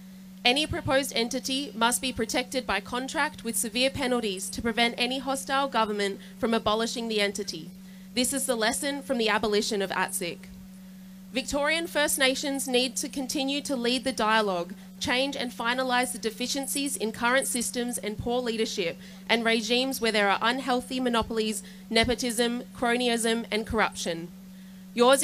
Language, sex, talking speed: English, female, 145 wpm